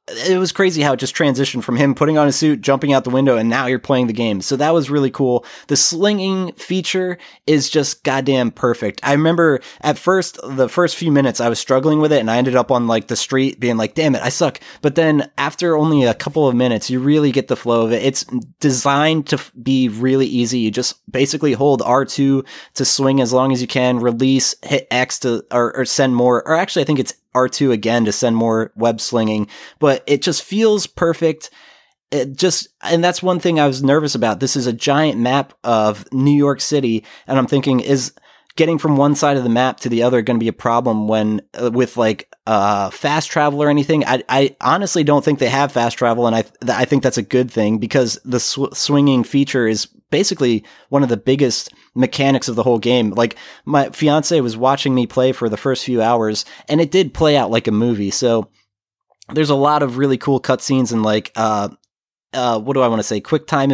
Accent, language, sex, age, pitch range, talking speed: American, English, male, 20-39, 120-145 Hz, 225 wpm